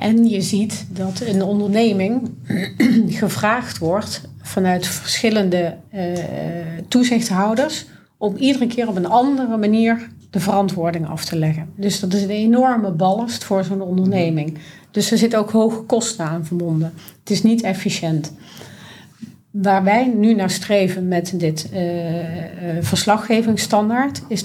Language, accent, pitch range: Dutch, Dutch, 175-220 Hz